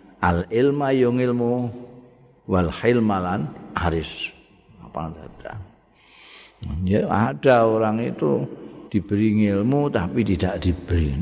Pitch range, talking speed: 95-110 Hz, 80 wpm